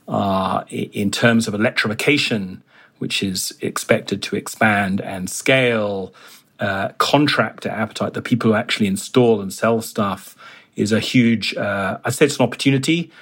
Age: 30-49